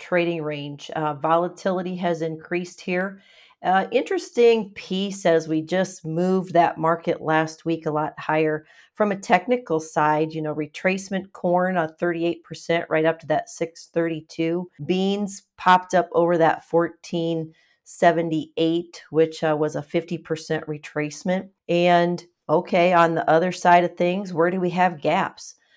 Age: 40-59